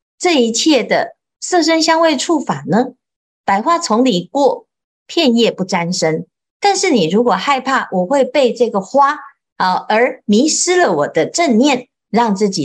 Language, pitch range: Chinese, 195-295 Hz